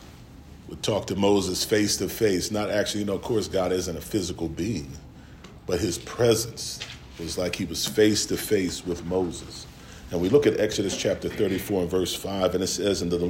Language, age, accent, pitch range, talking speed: English, 40-59, American, 85-115 Hz, 185 wpm